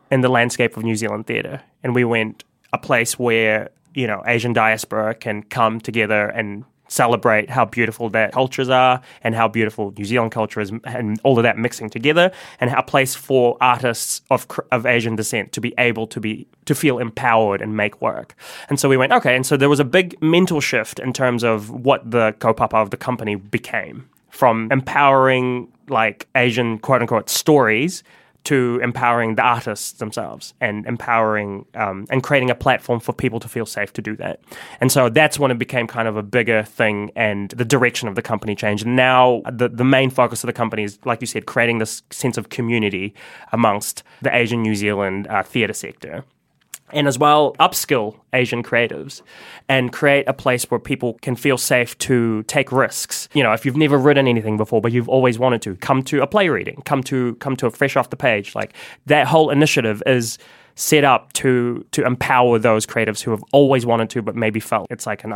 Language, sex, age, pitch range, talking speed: English, male, 20-39, 110-130 Hz, 205 wpm